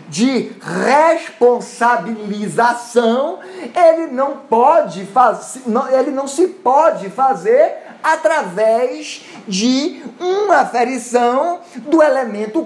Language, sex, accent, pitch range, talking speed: Portuguese, male, Brazilian, 230-305 Hz, 80 wpm